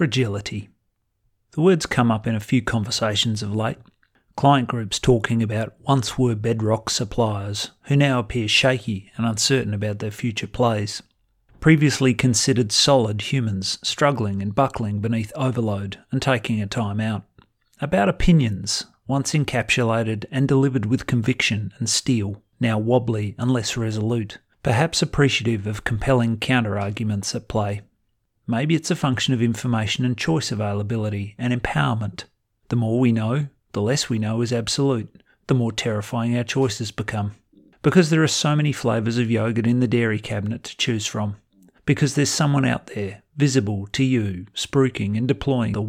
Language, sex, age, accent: English, male, 40-59, Australian